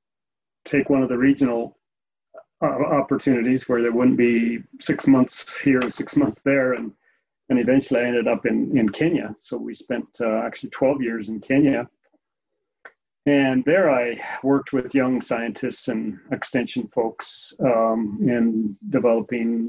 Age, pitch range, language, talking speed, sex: 40-59, 120-140 Hz, English, 145 wpm, male